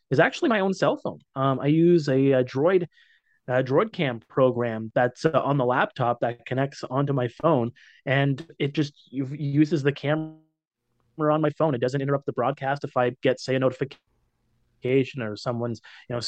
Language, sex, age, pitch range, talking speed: English, male, 30-49, 125-150 Hz, 185 wpm